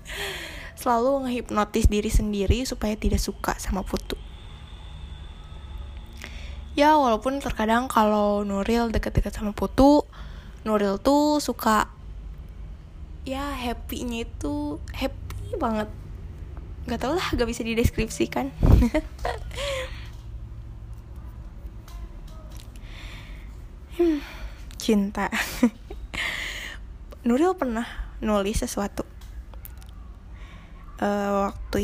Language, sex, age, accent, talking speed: Indonesian, female, 10-29, native, 75 wpm